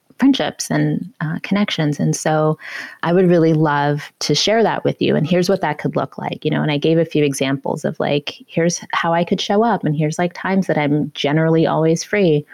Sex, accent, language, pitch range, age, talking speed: female, American, English, 160-205 Hz, 20-39, 225 wpm